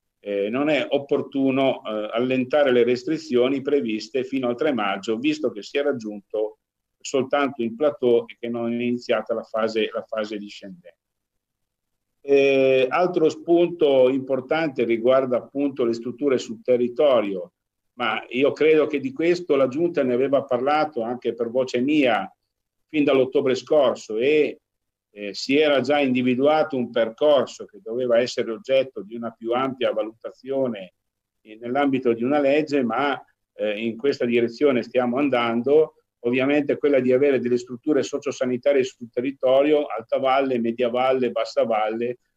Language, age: Italian, 50-69